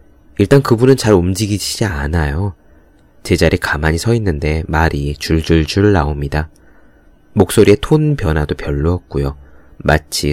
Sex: male